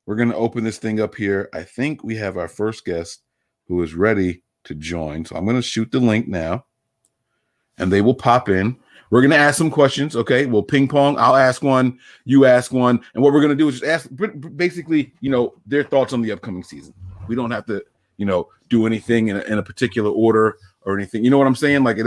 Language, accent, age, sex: English, American, 30-49, male